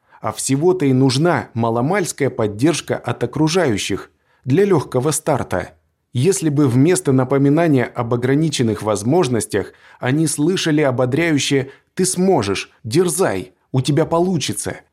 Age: 20-39